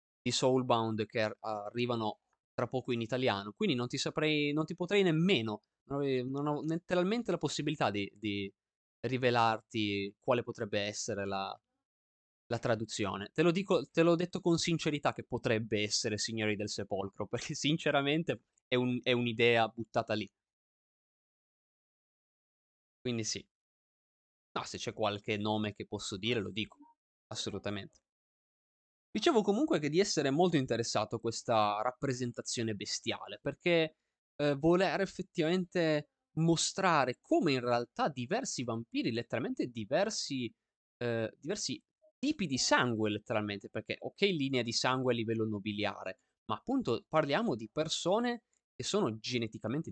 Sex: male